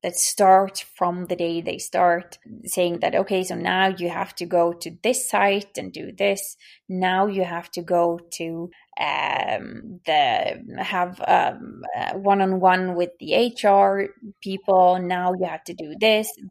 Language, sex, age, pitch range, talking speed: English, female, 20-39, 180-210 Hz, 160 wpm